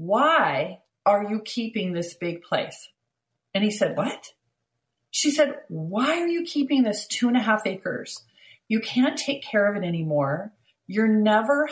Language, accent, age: English, American, 40-59